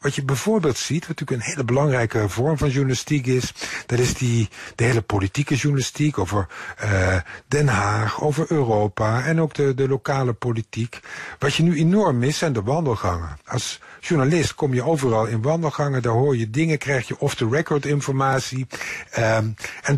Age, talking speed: 50-69, 165 wpm